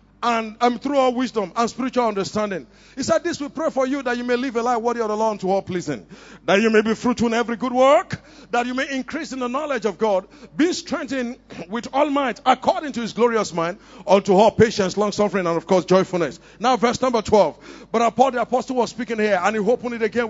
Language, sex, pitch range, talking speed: English, male, 215-265 Hz, 240 wpm